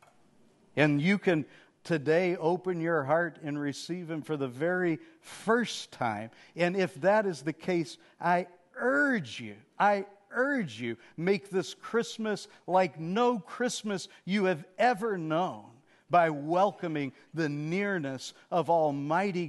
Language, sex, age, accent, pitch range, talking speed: English, male, 50-69, American, 150-200 Hz, 130 wpm